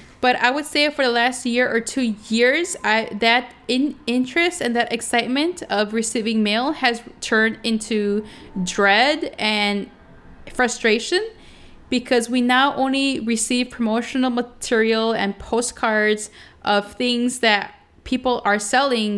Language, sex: English, female